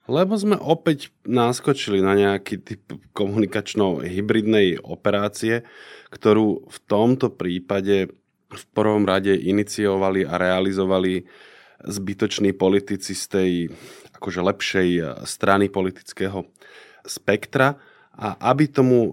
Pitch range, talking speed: 90-110 Hz, 95 wpm